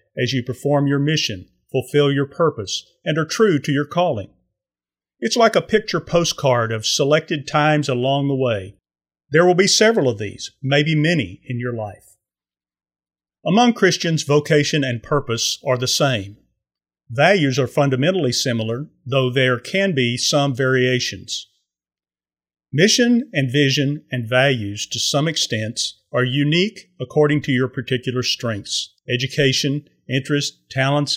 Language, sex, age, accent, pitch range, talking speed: English, male, 40-59, American, 120-150 Hz, 140 wpm